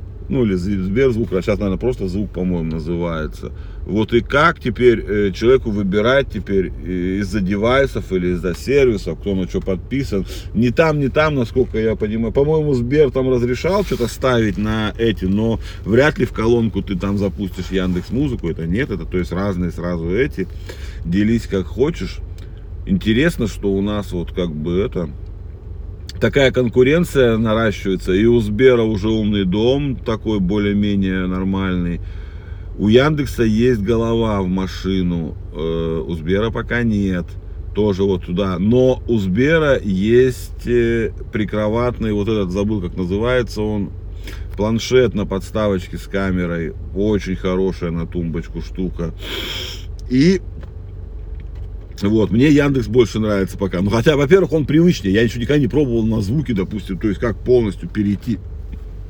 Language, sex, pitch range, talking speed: Russian, male, 90-115 Hz, 145 wpm